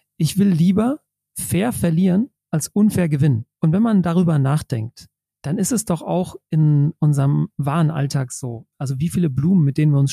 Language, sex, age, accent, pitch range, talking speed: German, male, 40-59, German, 145-180 Hz, 185 wpm